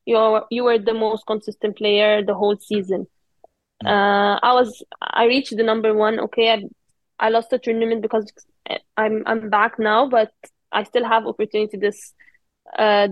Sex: female